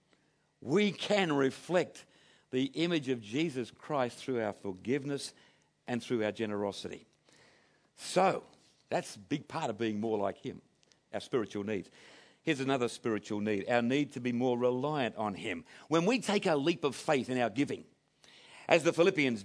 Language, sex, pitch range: English, male, 130-170 Hz